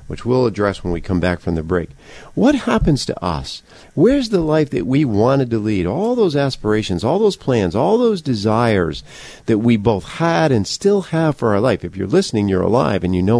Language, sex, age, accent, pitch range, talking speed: English, male, 50-69, American, 90-135 Hz, 220 wpm